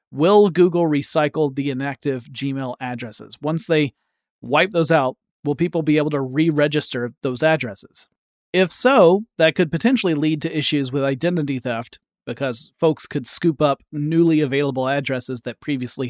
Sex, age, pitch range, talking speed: male, 30-49, 130-165 Hz, 155 wpm